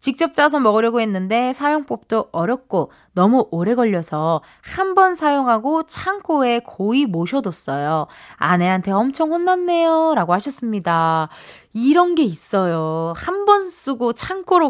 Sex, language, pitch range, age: female, Korean, 190-315 Hz, 20-39